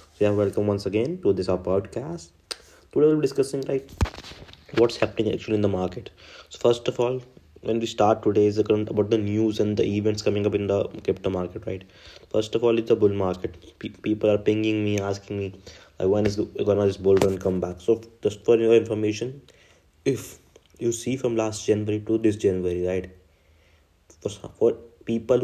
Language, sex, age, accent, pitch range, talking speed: English, male, 20-39, Indian, 95-110 Hz, 185 wpm